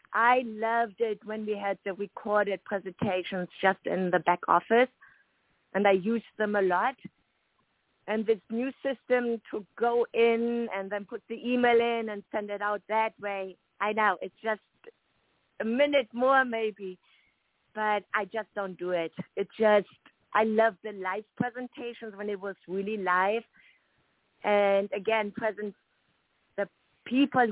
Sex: female